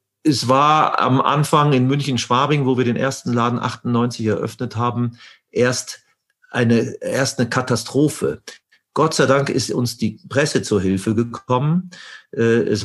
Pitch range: 115-140 Hz